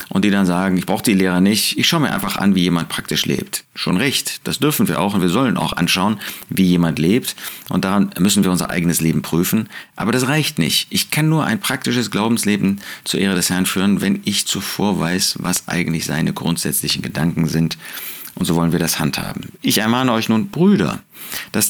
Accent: German